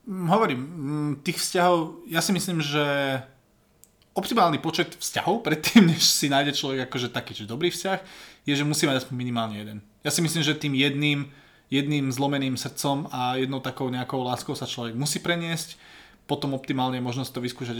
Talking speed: 170 wpm